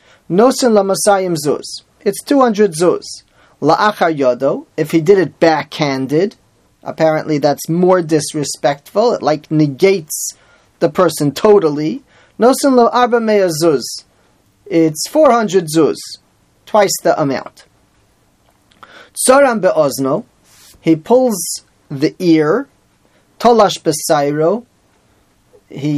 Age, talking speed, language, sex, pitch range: 30-49, 95 wpm, English, male, 155-205 Hz